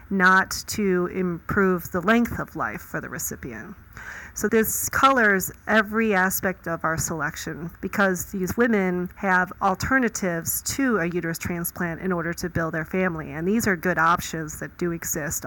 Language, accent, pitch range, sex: English, American, 170-200 Hz, female